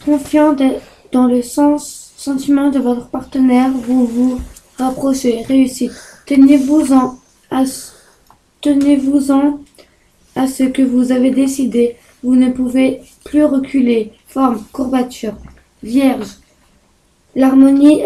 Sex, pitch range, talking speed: female, 245-270 Hz, 105 wpm